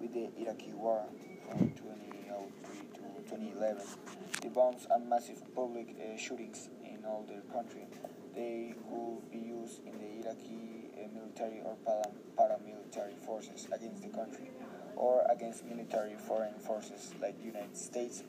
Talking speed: 140 wpm